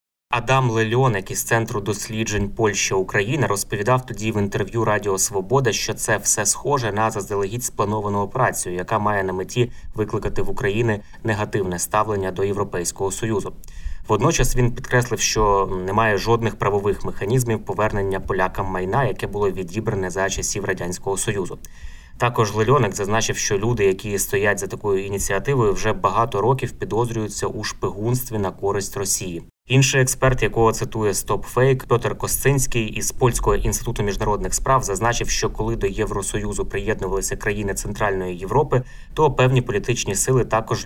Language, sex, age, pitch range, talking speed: Ukrainian, male, 20-39, 100-120 Hz, 140 wpm